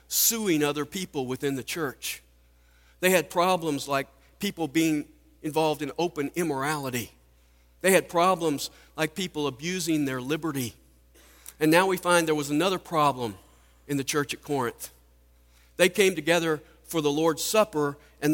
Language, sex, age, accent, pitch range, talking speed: English, male, 50-69, American, 110-160 Hz, 145 wpm